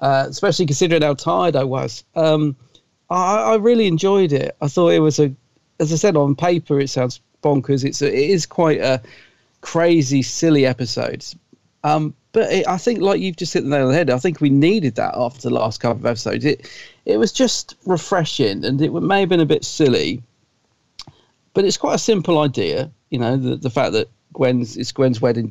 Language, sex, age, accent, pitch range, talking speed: English, male, 40-59, British, 125-165 Hz, 205 wpm